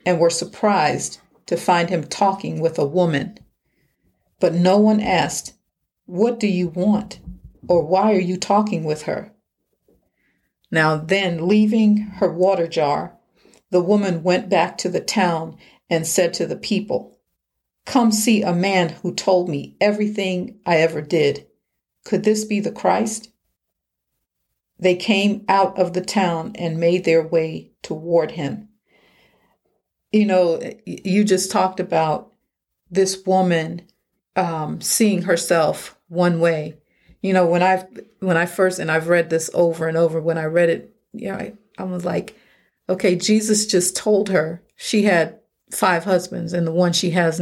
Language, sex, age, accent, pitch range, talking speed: English, female, 50-69, American, 165-195 Hz, 155 wpm